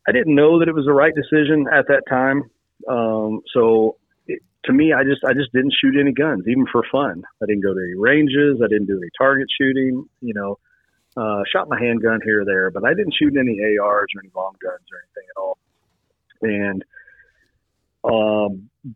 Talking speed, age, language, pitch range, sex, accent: 205 wpm, 40-59, English, 100-135 Hz, male, American